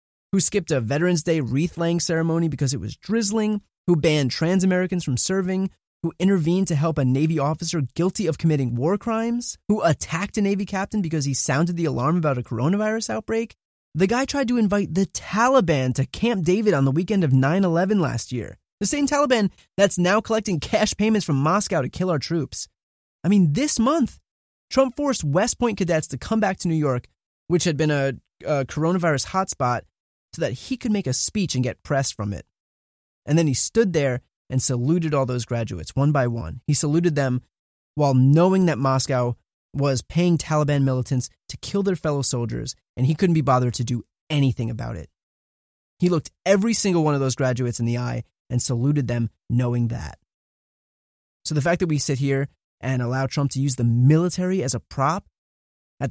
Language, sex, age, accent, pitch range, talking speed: English, male, 20-39, American, 130-185 Hz, 195 wpm